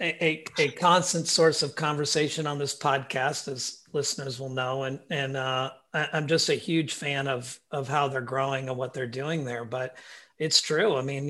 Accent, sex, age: American, male, 40-59